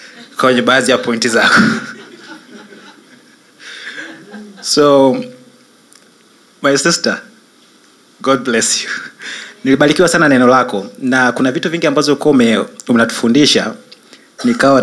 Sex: male